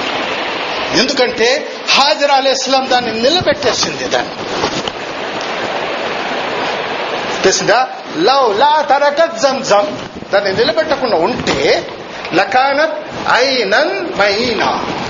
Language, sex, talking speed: Telugu, male, 45 wpm